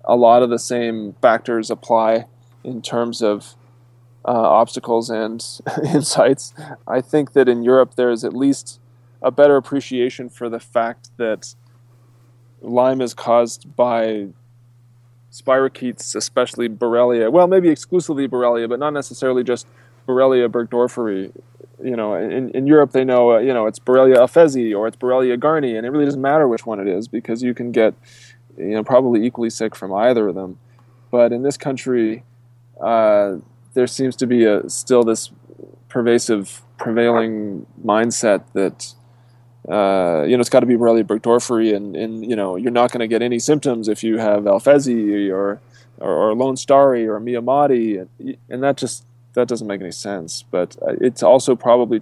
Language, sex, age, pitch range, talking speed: English, male, 20-39, 115-125 Hz, 165 wpm